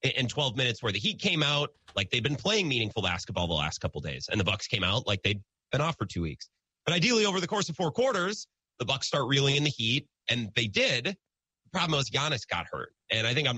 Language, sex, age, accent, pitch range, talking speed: English, male, 30-49, American, 105-150 Hz, 260 wpm